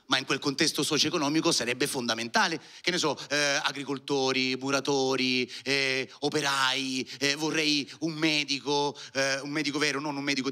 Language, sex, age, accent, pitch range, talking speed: Italian, male, 30-49, native, 135-165 Hz, 150 wpm